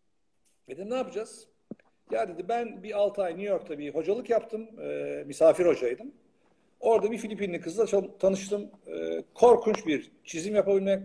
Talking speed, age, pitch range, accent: 140 wpm, 50-69, 175-260 Hz, native